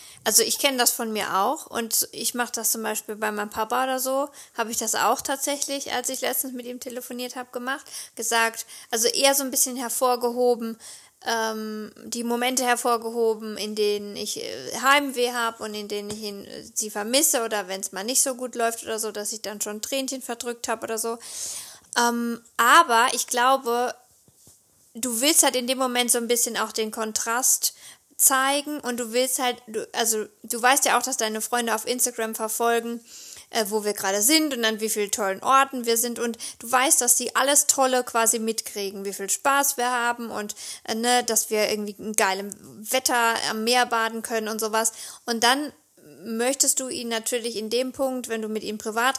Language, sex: German, female